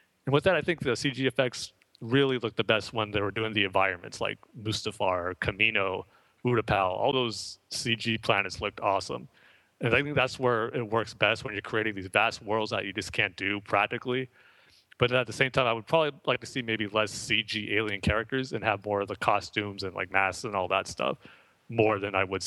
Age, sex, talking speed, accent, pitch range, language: 30-49, male, 215 wpm, American, 100-120 Hz, English